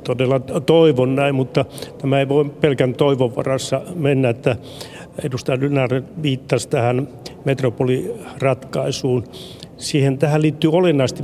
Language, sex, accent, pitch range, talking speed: Finnish, male, native, 130-160 Hz, 110 wpm